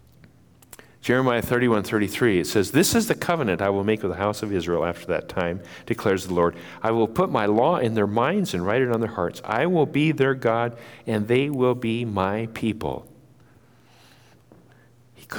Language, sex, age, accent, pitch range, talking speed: English, male, 50-69, American, 105-125 Hz, 190 wpm